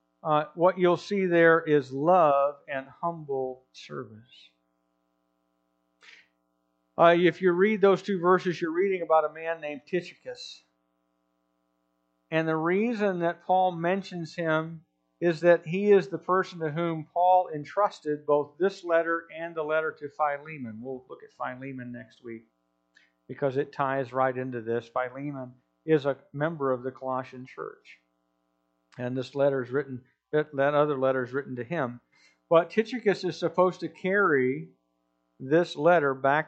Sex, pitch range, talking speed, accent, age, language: male, 125-175 Hz, 145 wpm, American, 50-69, English